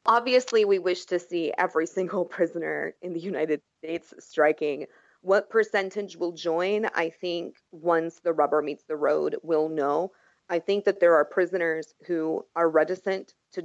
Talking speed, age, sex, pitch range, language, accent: 165 wpm, 30-49, female, 160-180 Hz, English, American